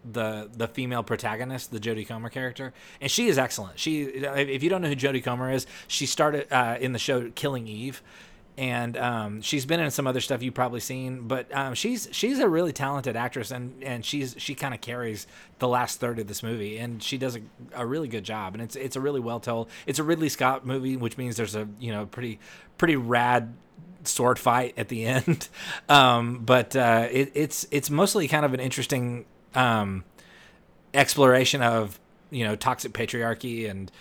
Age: 30-49